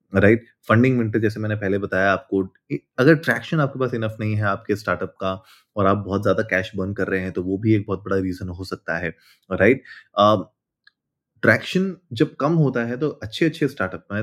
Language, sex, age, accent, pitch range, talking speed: Hindi, male, 20-39, native, 95-115 Hz, 205 wpm